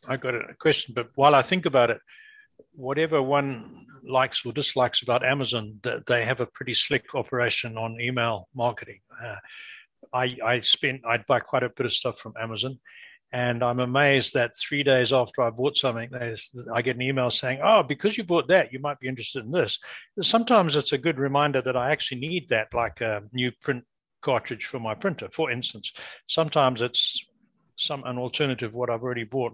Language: English